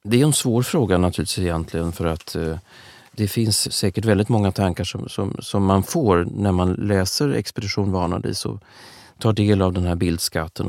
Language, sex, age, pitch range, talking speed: Swedish, male, 30-49, 90-115 Hz, 175 wpm